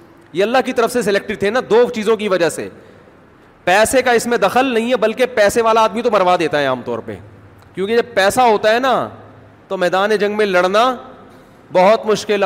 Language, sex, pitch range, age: Urdu, male, 150-210 Hz, 30-49